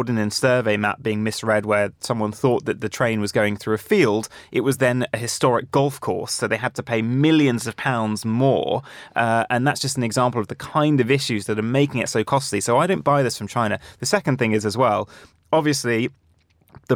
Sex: male